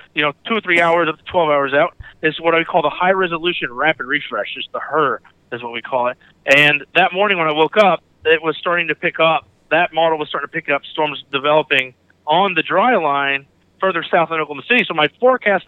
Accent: American